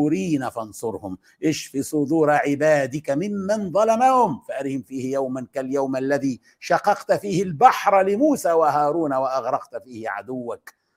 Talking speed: 105 wpm